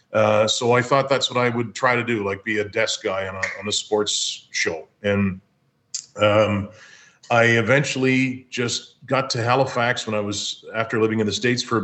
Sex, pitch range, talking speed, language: male, 105-125 Hz, 200 wpm, English